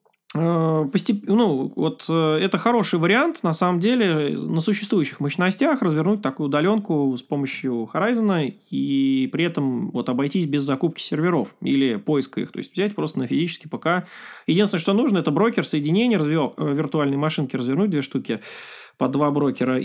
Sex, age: male, 20-39